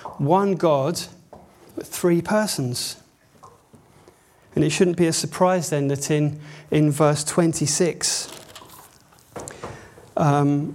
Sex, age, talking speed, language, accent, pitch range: male, 30-49, 100 wpm, English, British, 145-170 Hz